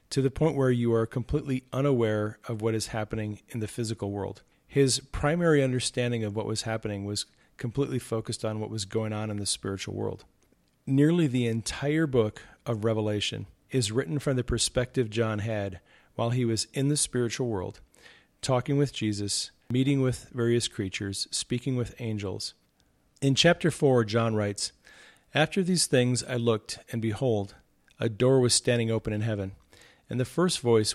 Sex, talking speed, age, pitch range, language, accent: male, 170 wpm, 40-59, 105-130 Hz, English, American